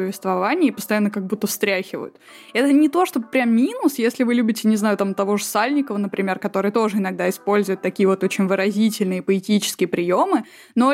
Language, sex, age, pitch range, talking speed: Russian, female, 20-39, 200-235 Hz, 180 wpm